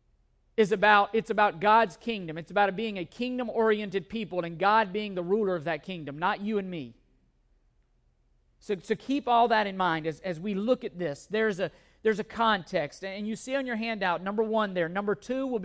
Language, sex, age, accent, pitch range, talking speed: English, male, 50-69, American, 195-240 Hz, 205 wpm